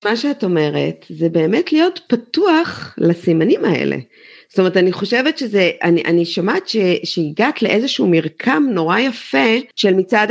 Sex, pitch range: female, 170-235 Hz